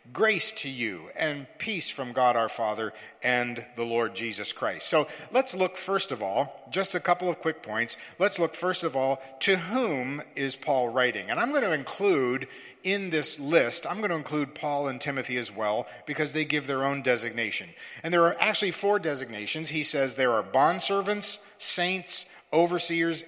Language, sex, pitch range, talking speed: English, male, 130-185 Hz, 185 wpm